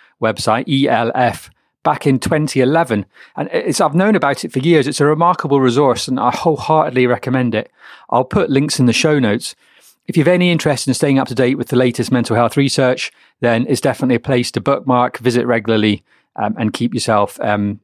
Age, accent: 30-49, British